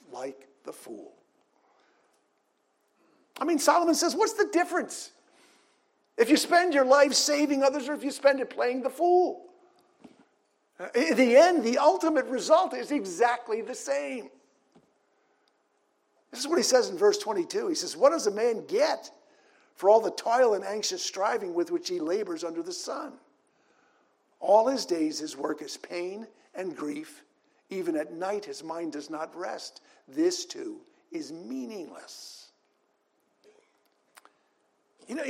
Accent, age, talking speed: American, 50-69, 150 wpm